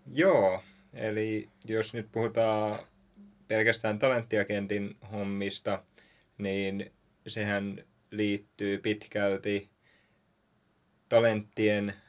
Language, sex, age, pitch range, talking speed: Finnish, male, 20-39, 100-110 Hz, 65 wpm